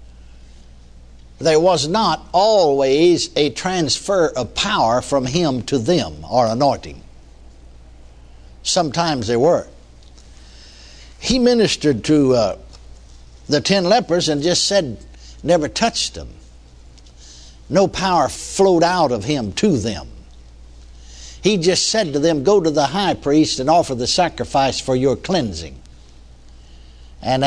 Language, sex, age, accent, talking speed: English, male, 60-79, American, 120 wpm